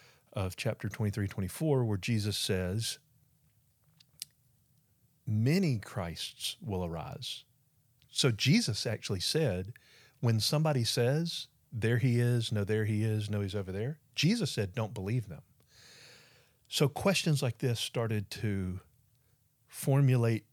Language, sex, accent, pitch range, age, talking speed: English, male, American, 105-135 Hz, 40-59, 120 wpm